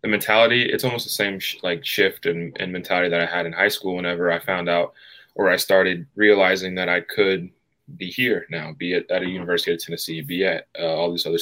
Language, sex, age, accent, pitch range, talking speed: English, male, 20-39, American, 85-95 Hz, 235 wpm